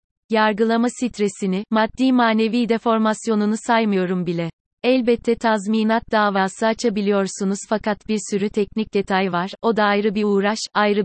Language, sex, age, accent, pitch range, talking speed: Turkish, female, 30-49, native, 195-225 Hz, 125 wpm